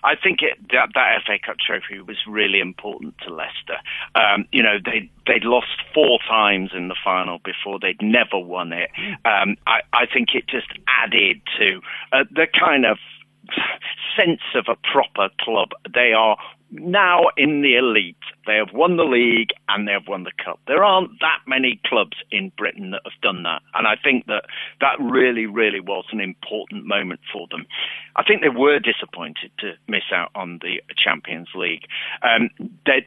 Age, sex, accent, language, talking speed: 50-69, male, British, English, 185 wpm